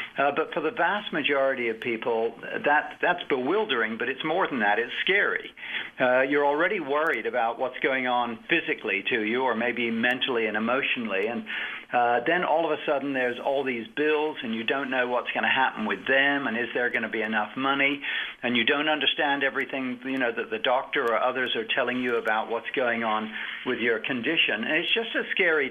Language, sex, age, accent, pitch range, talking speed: English, male, 50-69, American, 120-155 Hz, 210 wpm